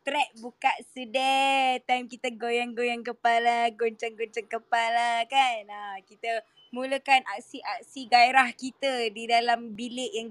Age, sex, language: 20-39, female, Malay